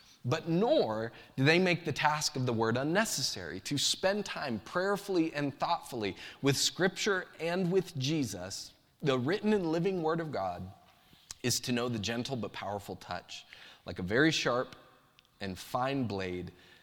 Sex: male